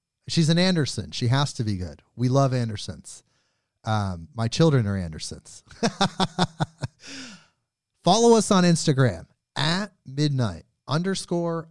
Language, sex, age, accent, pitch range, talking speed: English, male, 30-49, American, 110-145 Hz, 120 wpm